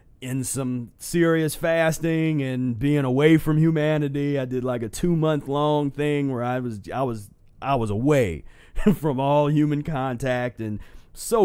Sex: male